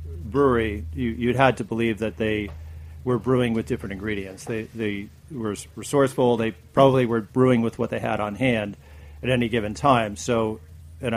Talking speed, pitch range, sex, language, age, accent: 175 wpm, 105-125 Hz, male, English, 40-59, American